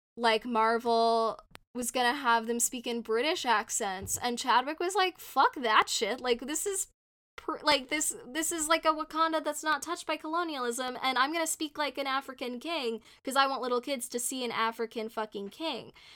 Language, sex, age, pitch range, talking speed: English, female, 10-29, 215-265 Hz, 190 wpm